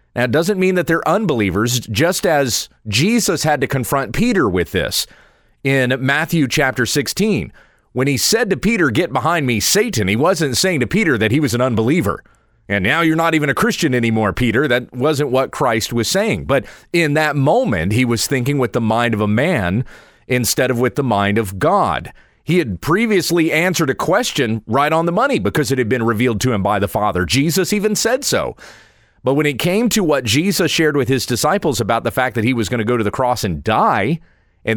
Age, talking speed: 40-59, 210 wpm